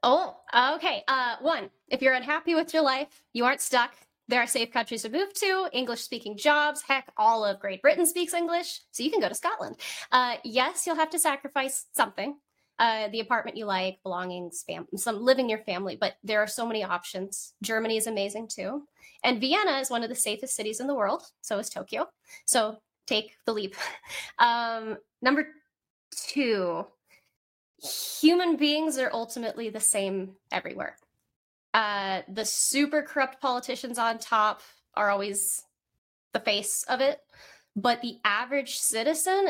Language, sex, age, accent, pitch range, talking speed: English, female, 10-29, American, 210-280 Hz, 165 wpm